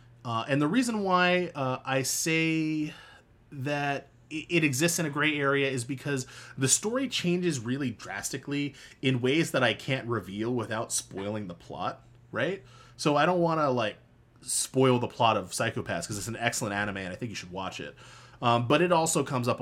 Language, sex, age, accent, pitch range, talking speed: English, male, 30-49, American, 115-145 Hz, 190 wpm